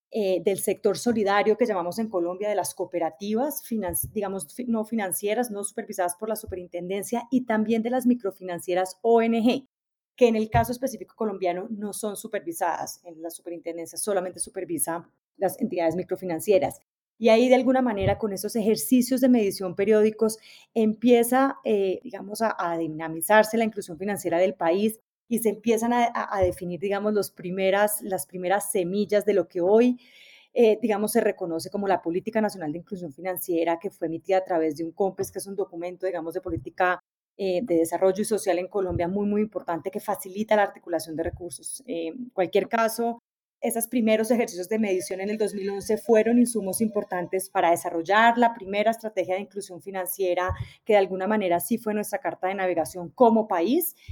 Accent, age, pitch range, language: Colombian, 30-49, 180-220 Hz, English